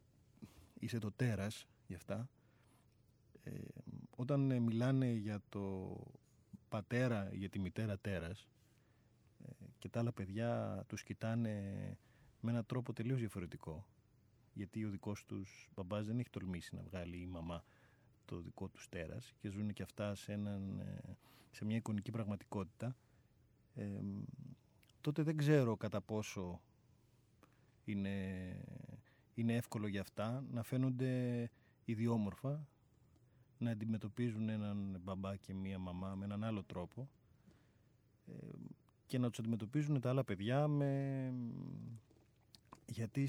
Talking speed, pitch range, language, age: 125 wpm, 100-125 Hz, Greek, 30-49